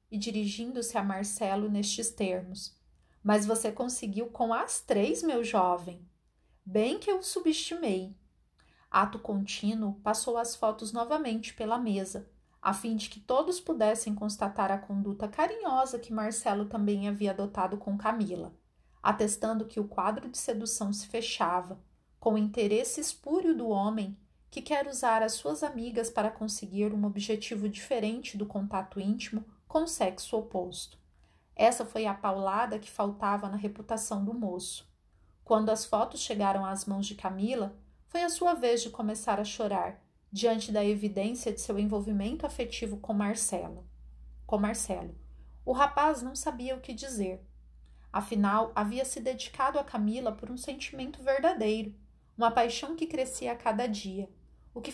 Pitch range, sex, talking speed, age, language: 205-245 Hz, female, 150 wpm, 40-59, Portuguese